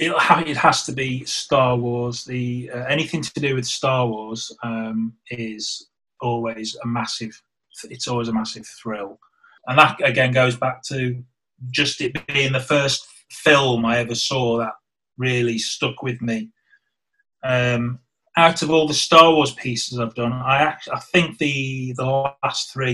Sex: male